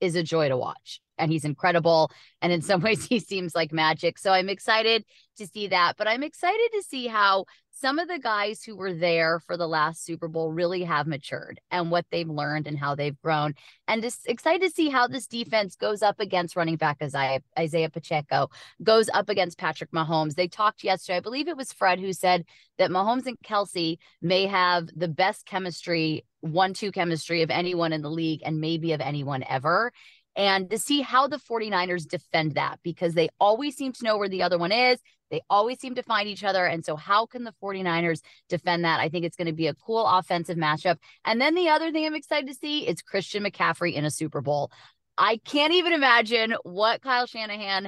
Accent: American